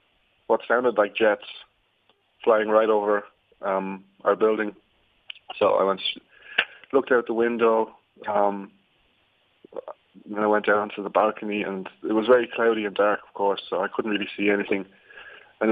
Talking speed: 155 wpm